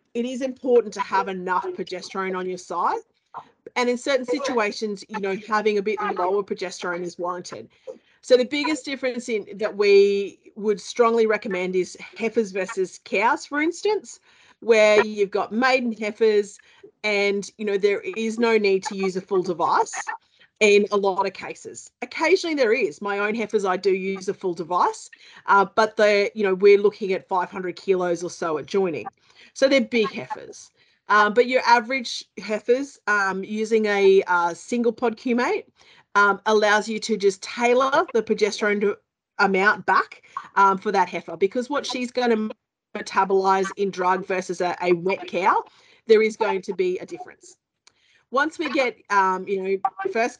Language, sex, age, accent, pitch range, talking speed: English, female, 40-59, Australian, 195-255 Hz, 170 wpm